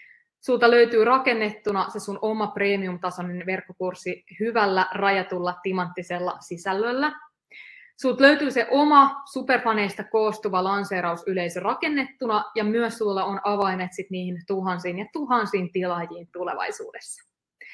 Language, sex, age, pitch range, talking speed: Finnish, female, 20-39, 185-255 Hz, 110 wpm